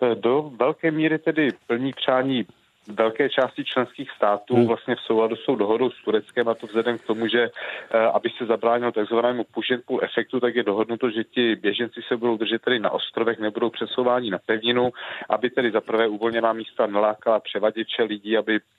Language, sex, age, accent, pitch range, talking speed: Czech, male, 40-59, native, 110-120 Hz, 175 wpm